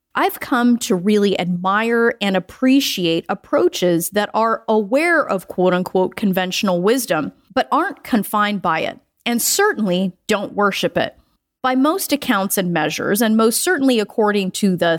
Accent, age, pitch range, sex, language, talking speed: American, 30-49, 190-285 Hz, female, English, 145 wpm